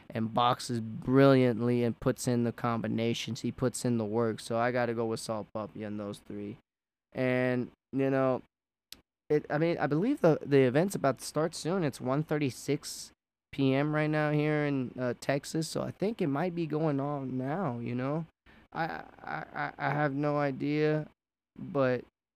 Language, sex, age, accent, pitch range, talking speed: English, male, 20-39, American, 120-150 Hz, 180 wpm